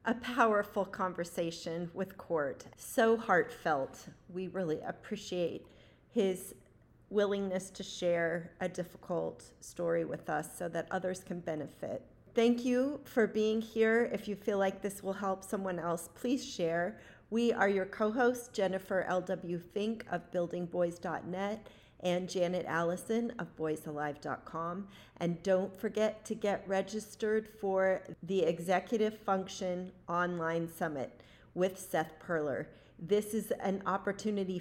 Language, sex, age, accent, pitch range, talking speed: English, female, 40-59, American, 175-210 Hz, 125 wpm